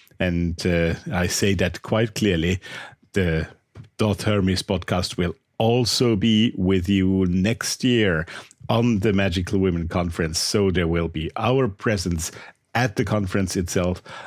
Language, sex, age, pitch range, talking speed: English, male, 50-69, 90-115 Hz, 140 wpm